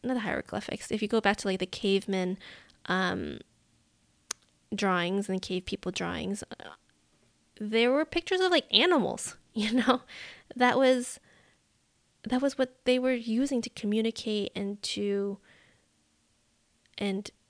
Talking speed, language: 125 wpm, English